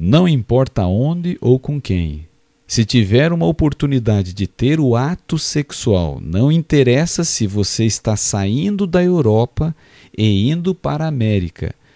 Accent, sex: Brazilian, male